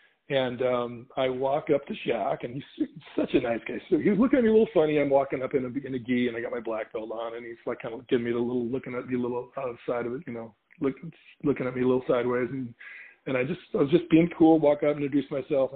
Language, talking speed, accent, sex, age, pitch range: English, 290 wpm, American, male, 40-59, 125-170 Hz